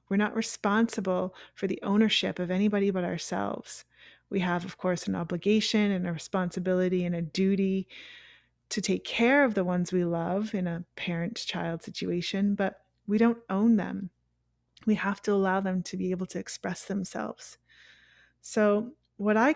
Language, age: English, 30-49